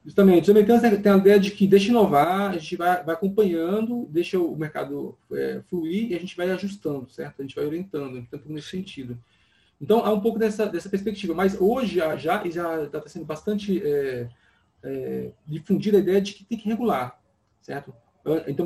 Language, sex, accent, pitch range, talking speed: Portuguese, male, Brazilian, 150-195 Hz, 195 wpm